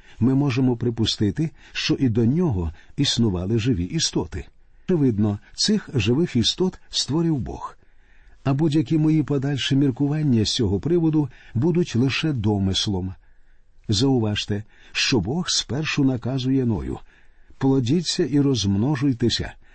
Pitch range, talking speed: 110-145 Hz, 110 wpm